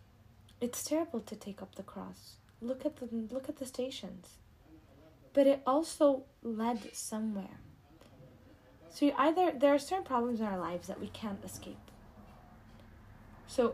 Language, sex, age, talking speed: English, female, 20-39, 150 wpm